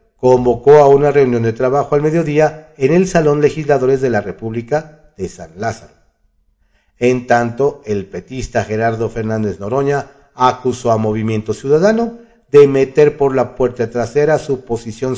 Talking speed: 145 wpm